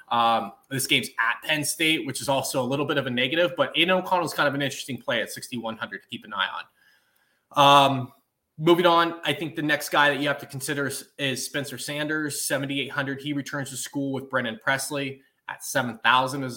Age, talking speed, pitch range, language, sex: 20-39, 210 wpm, 130-155 Hz, English, male